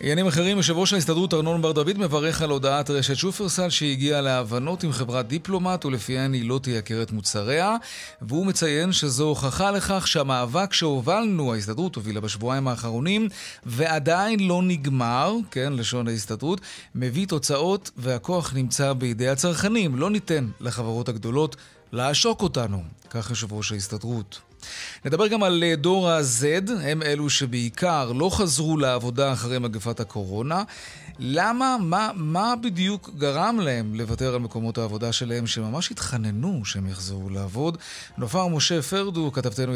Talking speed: 135 wpm